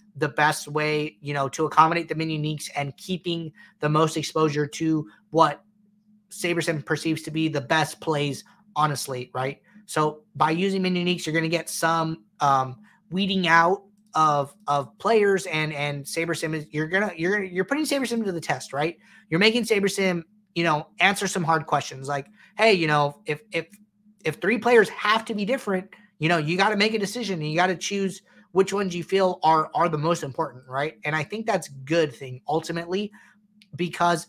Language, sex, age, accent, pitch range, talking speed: English, male, 30-49, American, 155-205 Hz, 190 wpm